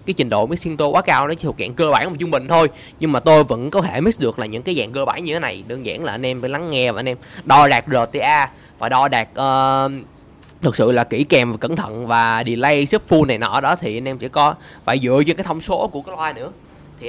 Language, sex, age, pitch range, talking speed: Vietnamese, male, 20-39, 125-165 Hz, 290 wpm